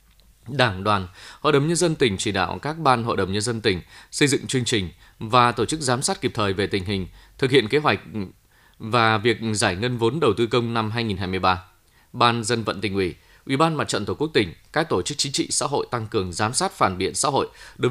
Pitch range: 105-130 Hz